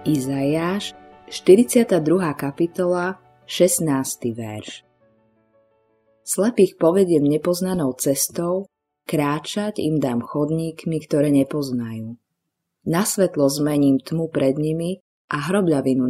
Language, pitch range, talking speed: Slovak, 125-180 Hz, 85 wpm